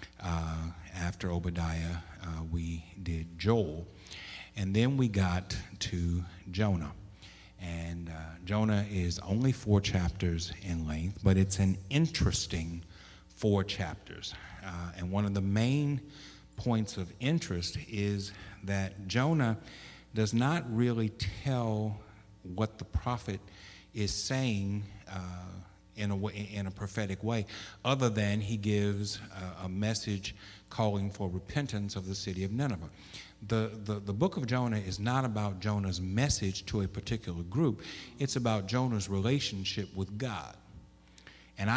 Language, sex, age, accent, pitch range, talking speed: English, male, 50-69, American, 95-110 Hz, 130 wpm